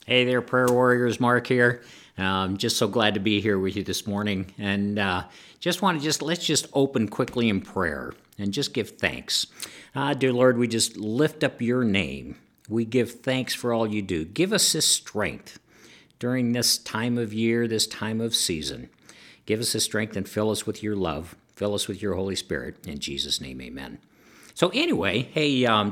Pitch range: 100-125 Hz